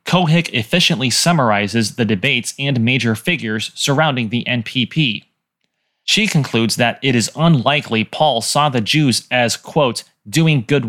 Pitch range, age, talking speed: 115-150 Hz, 30-49, 140 wpm